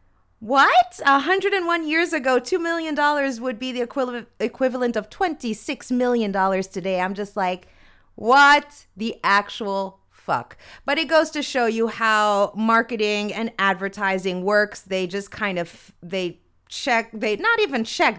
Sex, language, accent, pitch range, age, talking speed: female, English, American, 185-245 Hz, 30-49, 150 wpm